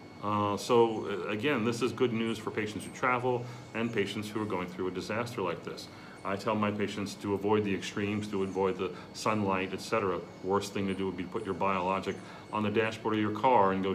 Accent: American